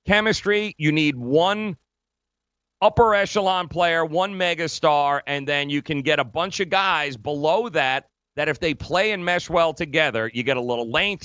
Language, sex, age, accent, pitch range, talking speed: English, male, 40-59, American, 120-155 Hz, 175 wpm